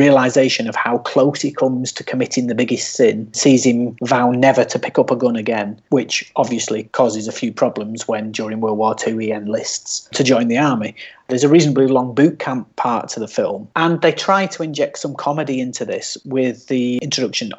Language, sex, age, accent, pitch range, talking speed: English, male, 30-49, British, 120-145 Hz, 205 wpm